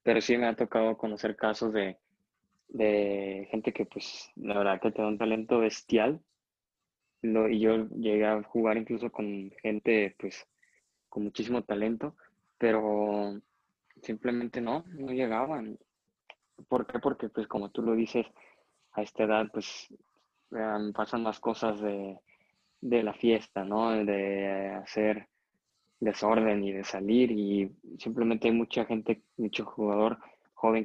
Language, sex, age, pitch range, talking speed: Spanish, male, 20-39, 105-115 Hz, 140 wpm